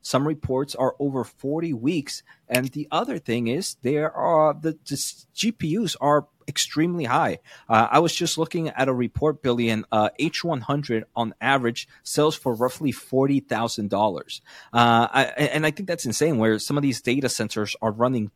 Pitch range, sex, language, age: 115-145 Hz, male, English, 30-49